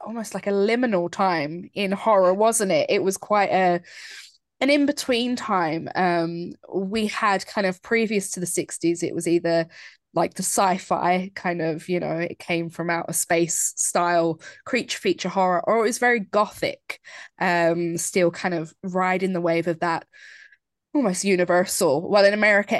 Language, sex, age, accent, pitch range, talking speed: English, female, 20-39, British, 175-225 Hz, 165 wpm